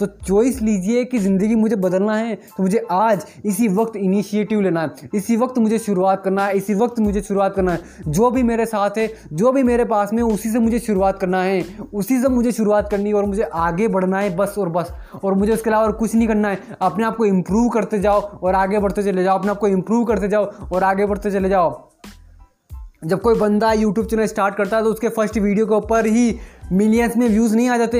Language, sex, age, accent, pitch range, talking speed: Hindi, male, 20-39, native, 200-225 Hz, 235 wpm